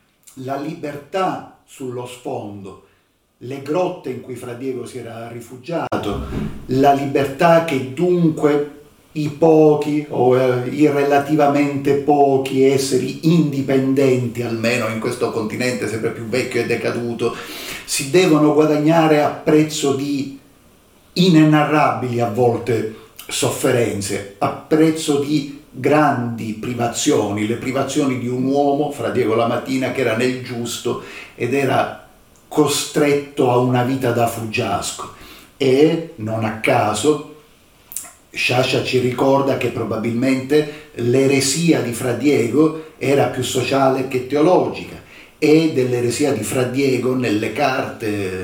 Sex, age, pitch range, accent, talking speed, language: male, 50-69, 120-145 Hz, native, 115 wpm, Italian